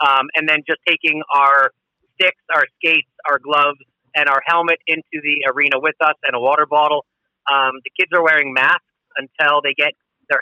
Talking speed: 190 wpm